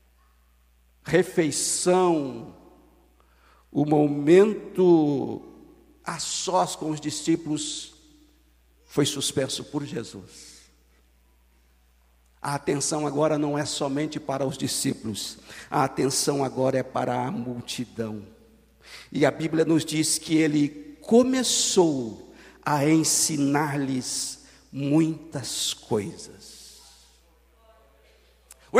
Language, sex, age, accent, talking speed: Portuguese, male, 60-79, Brazilian, 85 wpm